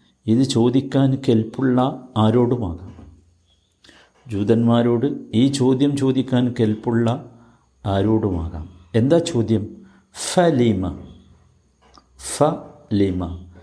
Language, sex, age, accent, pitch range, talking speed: Malayalam, male, 50-69, native, 95-130 Hz, 65 wpm